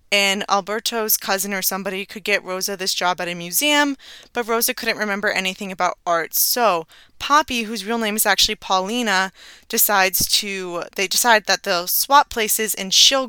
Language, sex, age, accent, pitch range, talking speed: English, female, 20-39, American, 185-225 Hz, 170 wpm